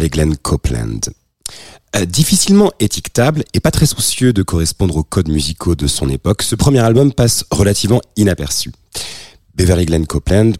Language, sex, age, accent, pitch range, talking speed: French, male, 30-49, French, 80-110 Hz, 155 wpm